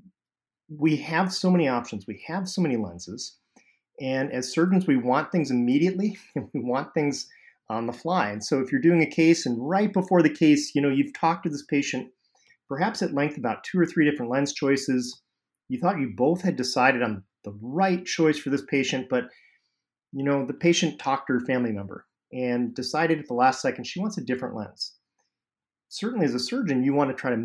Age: 40-59